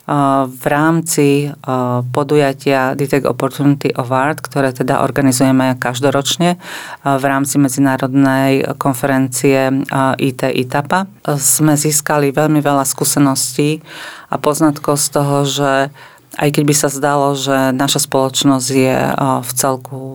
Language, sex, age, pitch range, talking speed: Slovak, female, 40-59, 130-145 Hz, 110 wpm